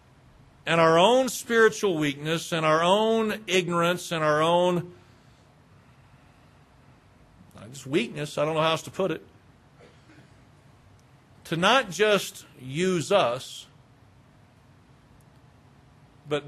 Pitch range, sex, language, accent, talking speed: 125-165 Hz, male, English, American, 100 wpm